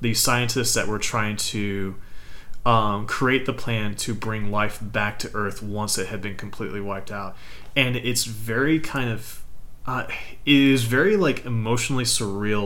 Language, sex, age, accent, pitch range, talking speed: English, male, 30-49, American, 105-125 Hz, 165 wpm